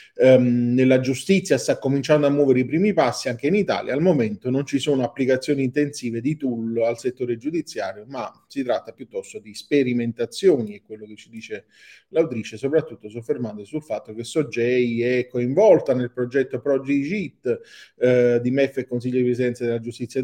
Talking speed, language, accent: 165 wpm, Italian, native